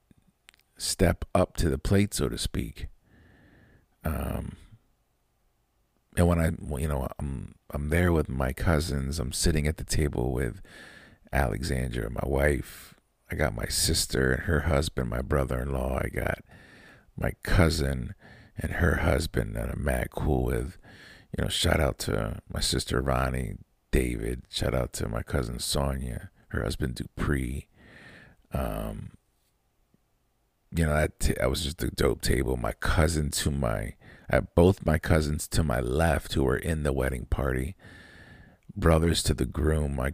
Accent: American